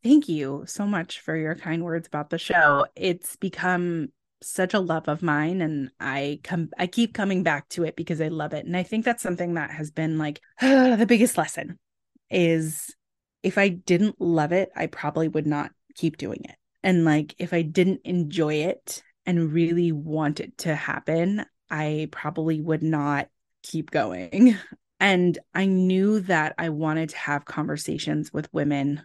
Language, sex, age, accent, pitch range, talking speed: English, female, 20-39, American, 155-190 Hz, 180 wpm